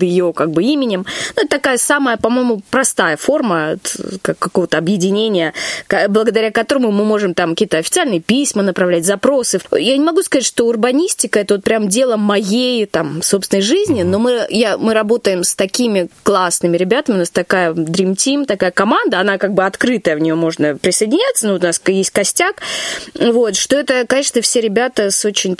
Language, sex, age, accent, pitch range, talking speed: Russian, female, 20-39, native, 185-245 Hz, 180 wpm